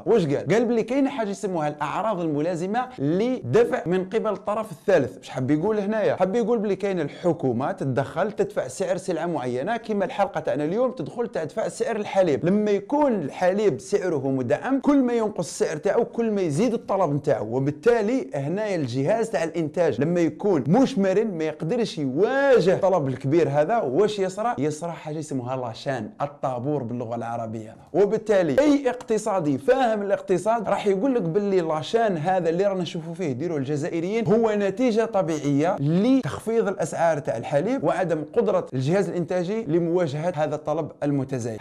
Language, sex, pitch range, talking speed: Arabic, male, 150-220 Hz, 155 wpm